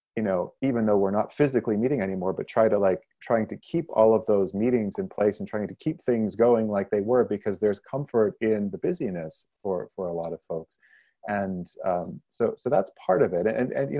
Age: 30-49